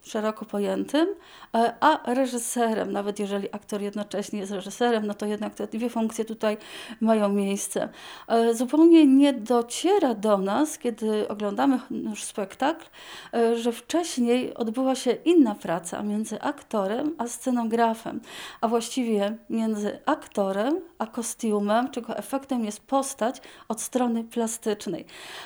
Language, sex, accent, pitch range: Polish, female, native, 215-270 Hz